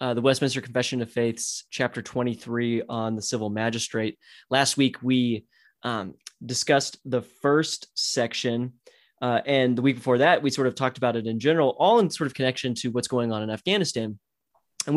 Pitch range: 115-135 Hz